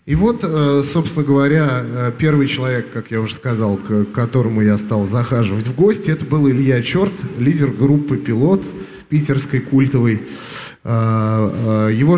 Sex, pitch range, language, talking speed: male, 120-150 Hz, Russian, 135 wpm